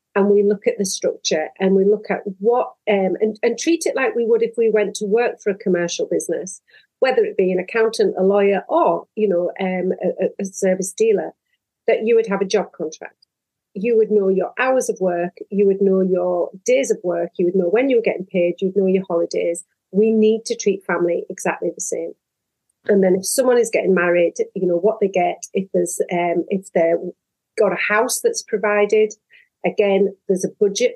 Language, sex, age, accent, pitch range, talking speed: English, female, 40-59, British, 190-240 Hz, 215 wpm